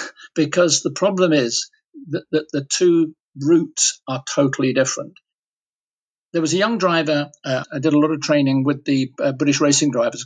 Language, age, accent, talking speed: English, 50-69, British, 170 wpm